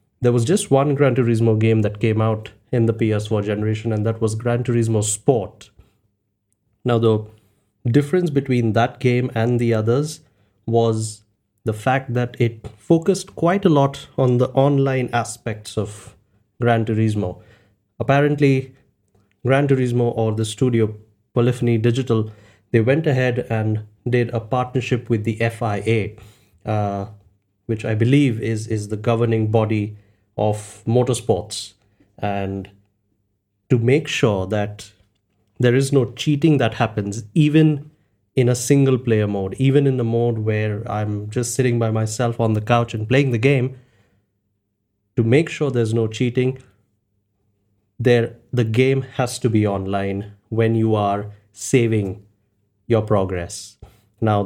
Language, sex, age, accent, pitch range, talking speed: English, male, 30-49, Indian, 105-125 Hz, 140 wpm